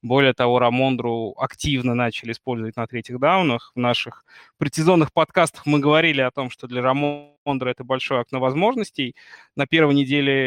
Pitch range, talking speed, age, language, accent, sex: 120-140 Hz, 155 wpm, 20-39, Russian, native, male